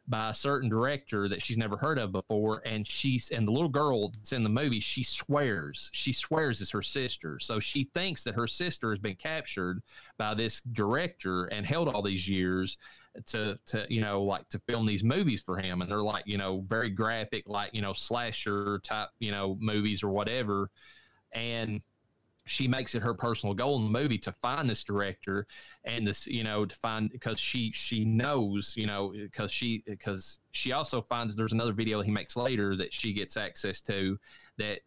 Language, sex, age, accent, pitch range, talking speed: English, male, 30-49, American, 100-120 Hz, 200 wpm